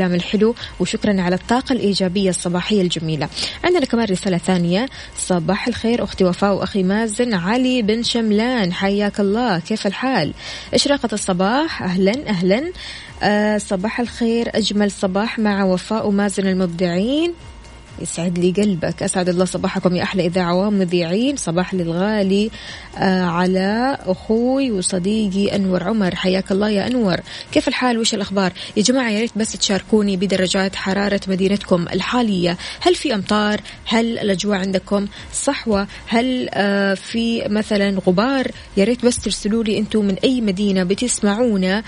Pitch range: 190-225 Hz